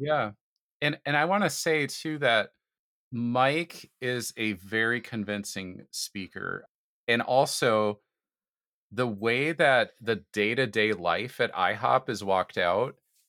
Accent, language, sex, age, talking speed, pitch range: American, English, male, 30-49, 125 wpm, 95-115 Hz